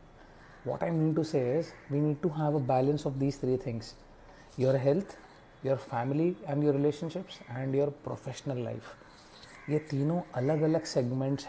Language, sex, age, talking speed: English, male, 30-49, 165 wpm